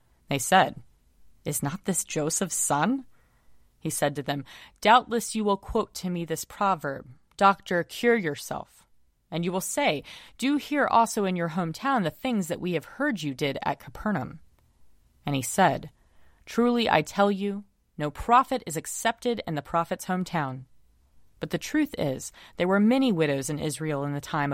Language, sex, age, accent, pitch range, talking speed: English, female, 30-49, American, 145-205 Hz, 170 wpm